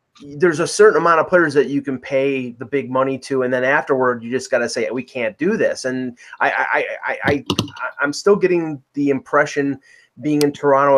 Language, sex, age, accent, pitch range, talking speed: English, male, 30-49, American, 120-140 Hz, 210 wpm